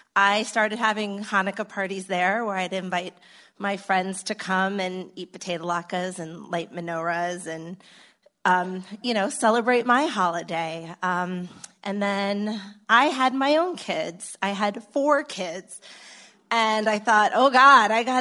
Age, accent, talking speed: 30-49, American, 150 wpm